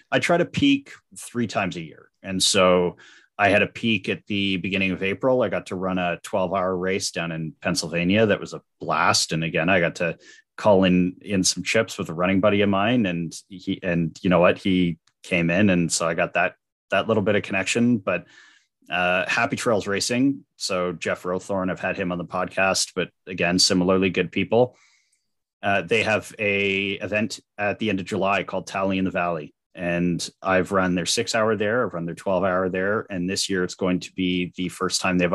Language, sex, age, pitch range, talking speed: English, male, 30-49, 90-100 Hz, 215 wpm